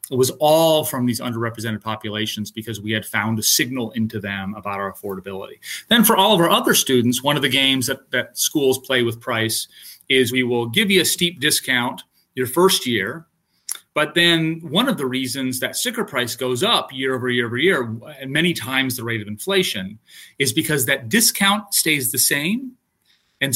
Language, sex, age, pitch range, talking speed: English, male, 30-49, 120-170 Hz, 195 wpm